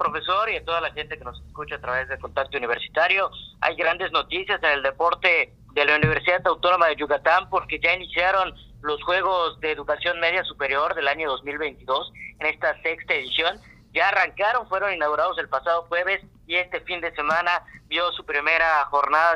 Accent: Mexican